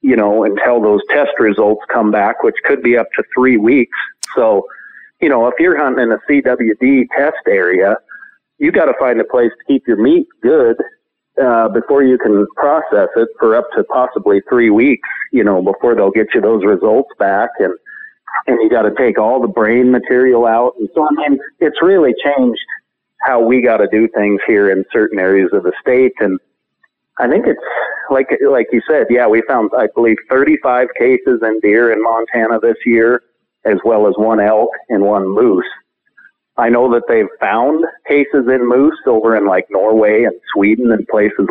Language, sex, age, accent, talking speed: English, male, 40-59, American, 195 wpm